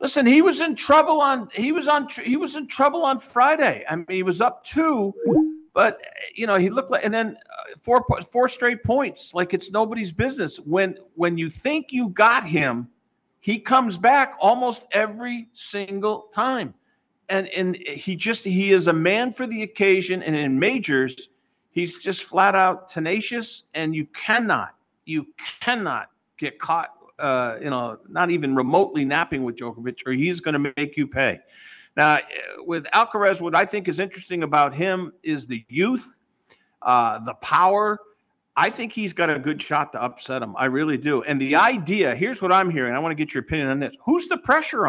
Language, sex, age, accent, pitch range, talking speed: English, male, 50-69, American, 170-260 Hz, 185 wpm